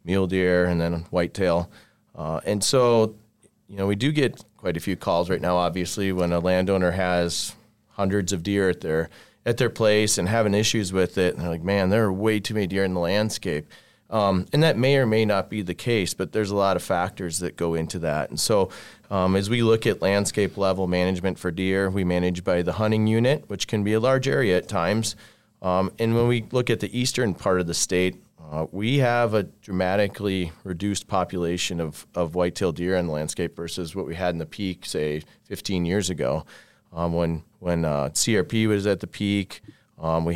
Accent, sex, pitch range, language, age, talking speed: American, male, 90-110 Hz, English, 30-49, 215 wpm